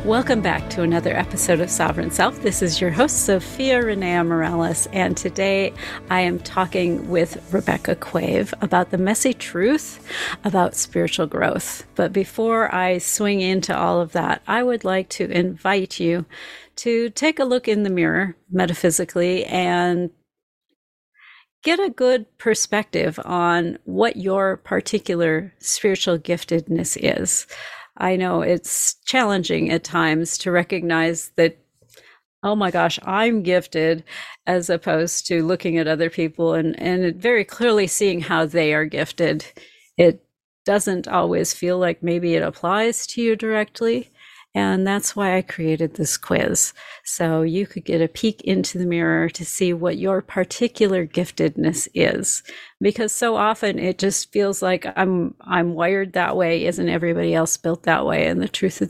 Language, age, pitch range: English, 40-59, 170-200 Hz